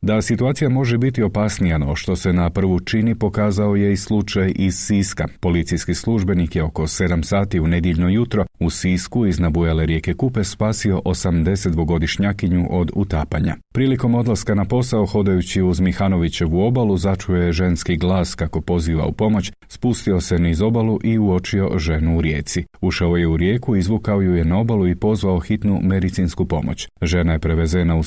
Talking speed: 165 wpm